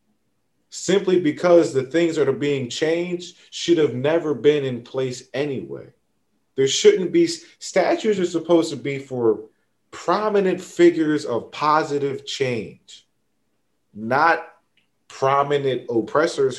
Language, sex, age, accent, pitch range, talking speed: English, male, 30-49, American, 120-175 Hz, 115 wpm